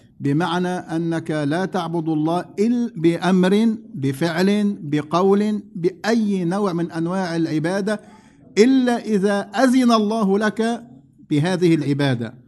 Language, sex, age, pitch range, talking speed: English, male, 50-69, 145-195 Hz, 100 wpm